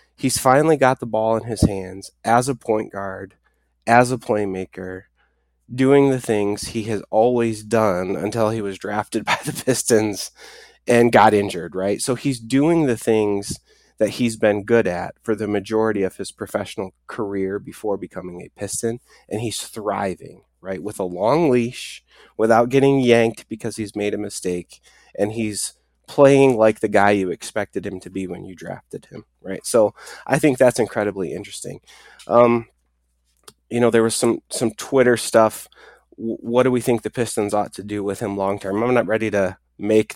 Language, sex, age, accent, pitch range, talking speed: English, male, 20-39, American, 100-120 Hz, 175 wpm